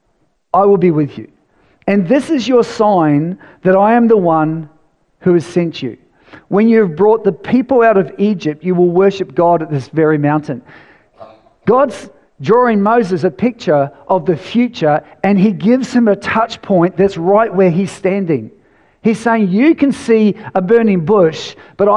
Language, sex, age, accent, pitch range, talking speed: English, male, 50-69, Australian, 175-225 Hz, 180 wpm